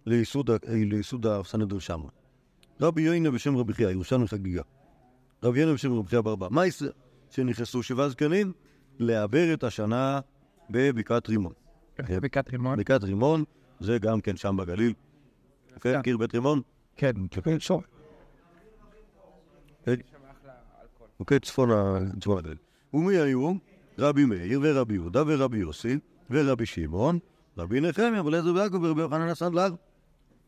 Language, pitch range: Hebrew, 115-155 Hz